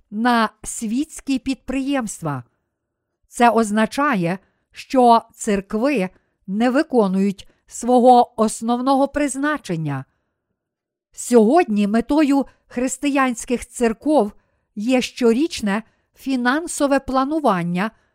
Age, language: 50-69, Ukrainian